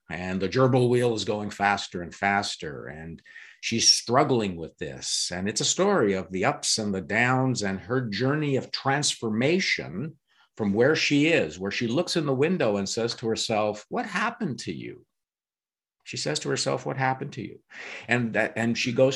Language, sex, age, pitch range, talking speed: English, male, 50-69, 105-145 Hz, 190 wpm